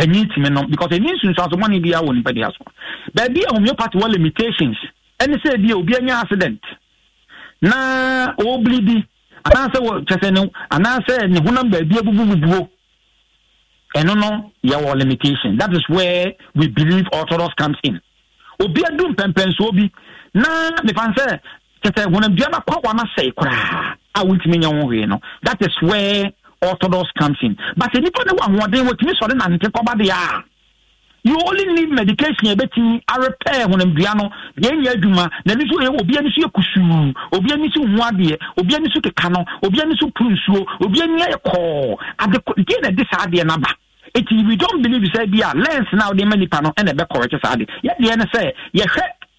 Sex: male